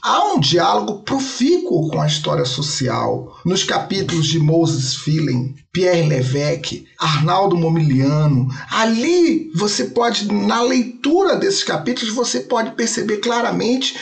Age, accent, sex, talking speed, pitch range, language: 40-59, Brazilian, male, 120 wpm, 155-225 Hz, Portuguese